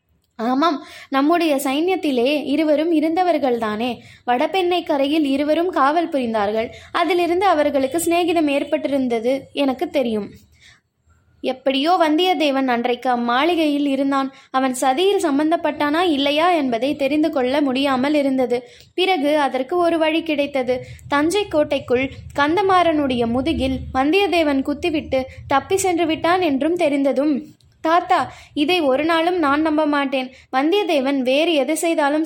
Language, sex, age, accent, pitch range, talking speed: Tamil, female, 20-39, native, 270-330 Hz, 105 wpm